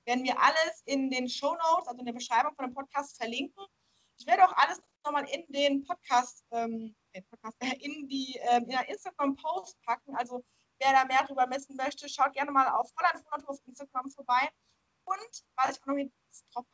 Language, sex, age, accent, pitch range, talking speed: German, female, 20-39, German, 235-285 Hz, 185 wpm